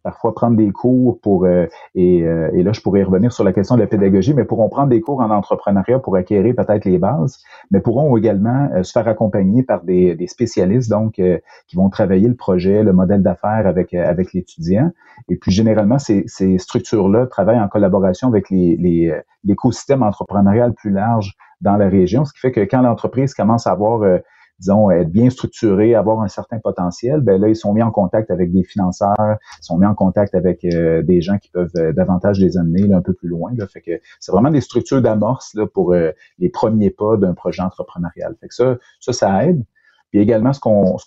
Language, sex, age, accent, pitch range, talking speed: French, male, 40-59, Canadian, 90-115 Hz, 215 wpm